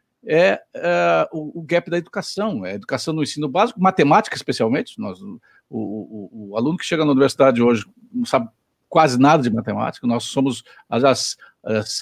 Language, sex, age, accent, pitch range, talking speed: Portuguese, male, 60-79, Brazilian, 140-220 Hz, 175 wpm